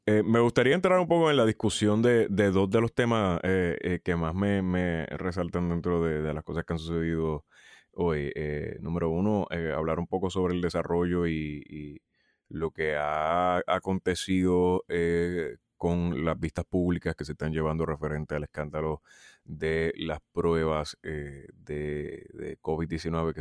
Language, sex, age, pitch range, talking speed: Spanish, male, 30-49, 80-95 Hz, 170 wpm